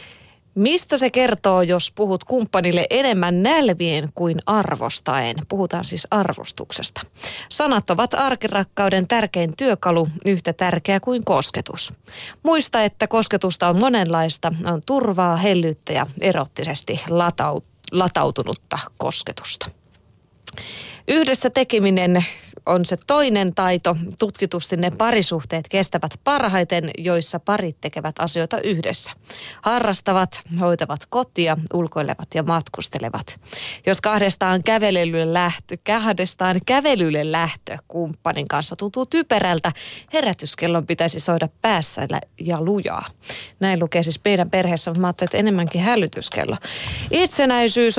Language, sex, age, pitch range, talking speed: Finnish, female, 30-49, 170-210 Hz, 105 wpm